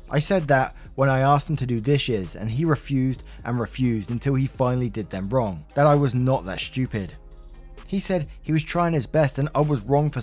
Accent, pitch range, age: British, 115-155 Hz, 20-39